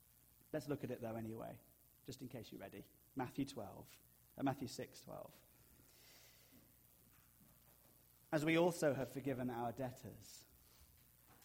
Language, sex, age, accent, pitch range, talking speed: English, male, 30-49, British, 120-160 Hz, 125 wpm